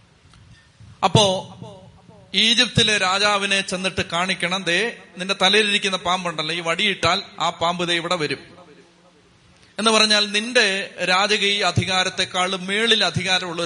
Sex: male